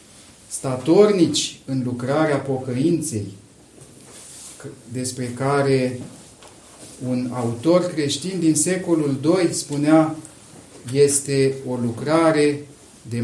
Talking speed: 75 wpm